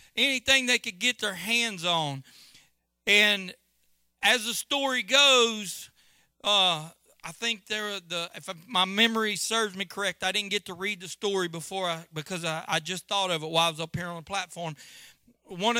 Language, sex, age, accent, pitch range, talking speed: English, male, 40-59, American, 175-235 Hz, 185 wpm